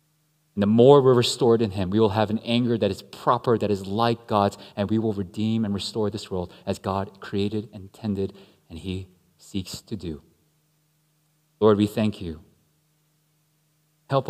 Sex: male